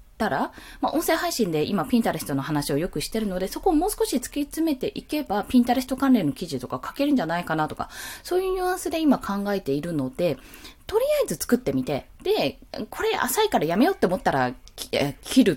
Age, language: 20-39, Japanese